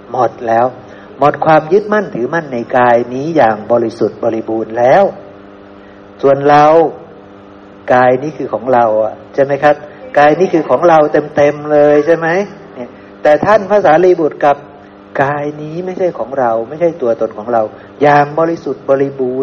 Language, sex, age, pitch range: Thai, male, 60-79, 110-160 Hz